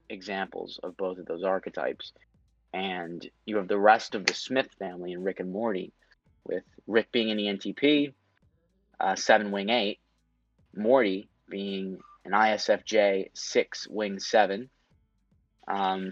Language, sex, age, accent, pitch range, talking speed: English, male, 20-39, American, 95-110 Hz, 140 wpm